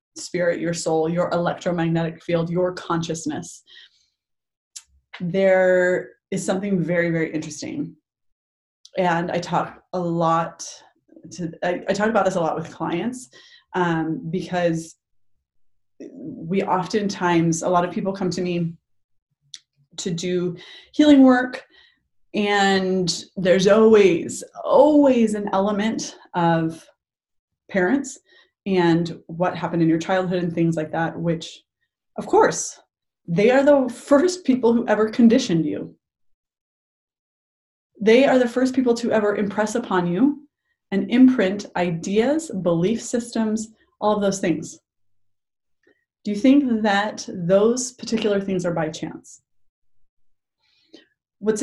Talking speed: 120 wpm